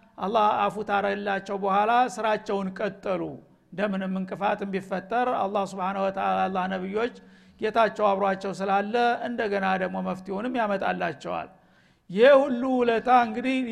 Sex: male